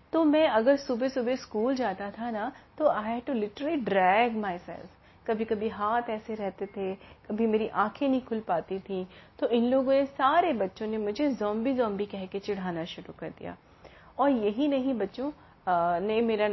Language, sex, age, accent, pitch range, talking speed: Hindi, female, 30-49, native, 195-255 Hz, 180 wpm